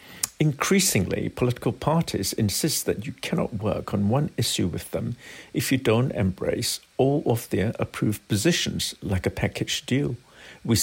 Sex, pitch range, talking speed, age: male, 100-135 Hz, 150 wpm, 60-79